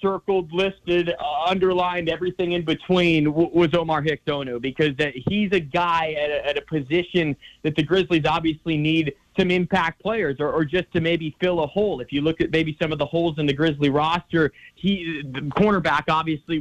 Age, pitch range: 30-49, 155-180 Hz